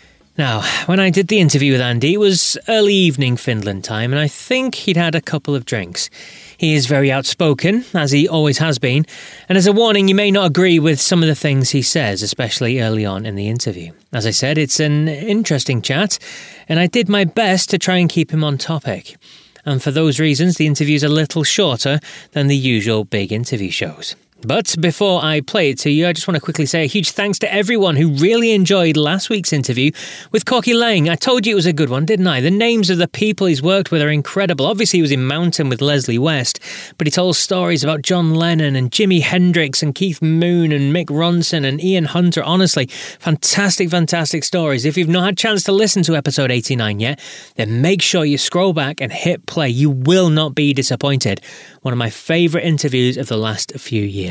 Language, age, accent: English, 30-49, British